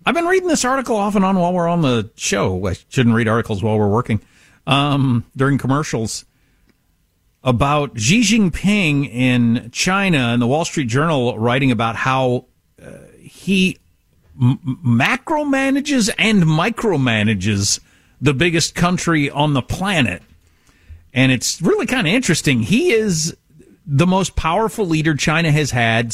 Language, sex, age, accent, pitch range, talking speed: English, male, 50-69, American, 115-180 Hz, 145 wpm